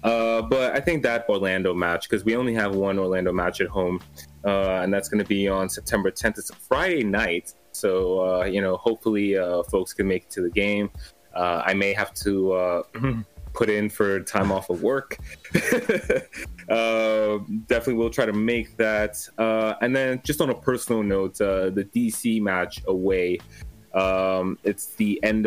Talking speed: 185 wpm